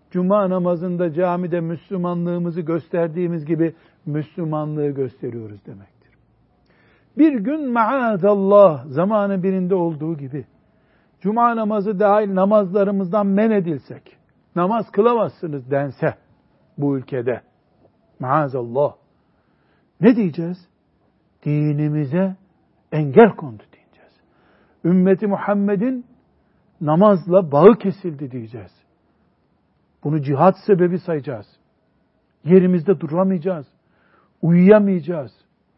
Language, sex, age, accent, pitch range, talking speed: Turkish, male, 60-79, native, 160-210 Hz, 80 wpm